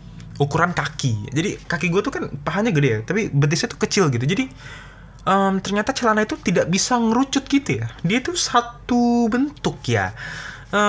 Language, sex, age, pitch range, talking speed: Indonesian, male, 20-39, 125-175 Hz, 170 wpm